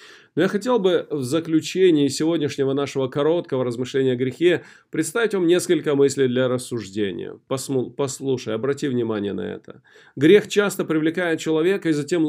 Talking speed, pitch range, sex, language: 145 wpm, 145-195 Hz, male, Russian